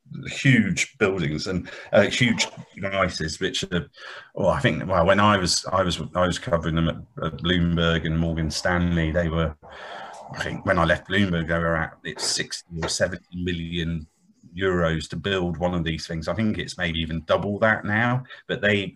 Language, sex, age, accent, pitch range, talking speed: English, male, 40-59, British, 85-95 Hz, 190 wpm